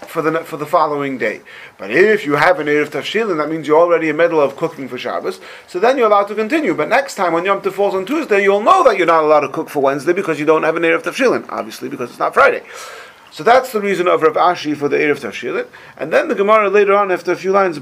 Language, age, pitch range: English, 40-59, 160-210 Hz